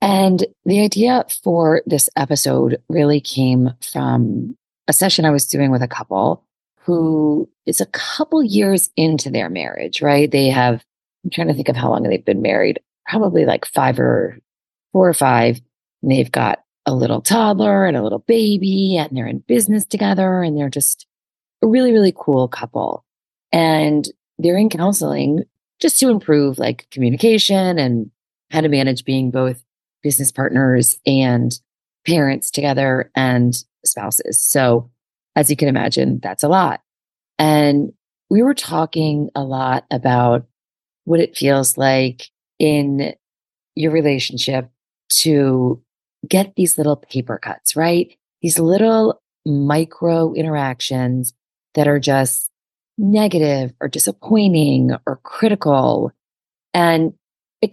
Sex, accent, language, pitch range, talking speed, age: female, American, English, 130-180 Hz, 140 wpm, 30-49